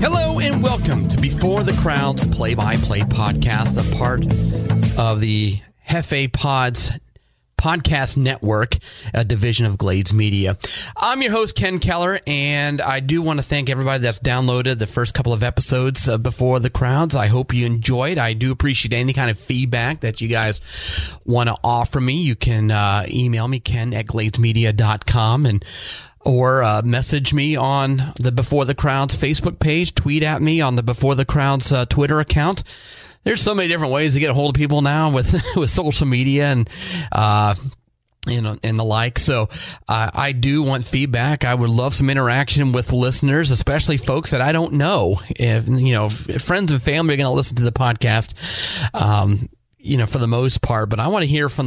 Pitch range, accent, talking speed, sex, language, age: 110-140 Hz, American, 190 wpm, male, English, 30-49